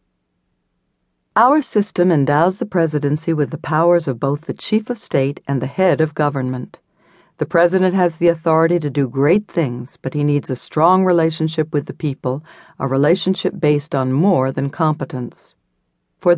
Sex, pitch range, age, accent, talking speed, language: female, 135-175 Hz, 60-79, American, 165 wpm, English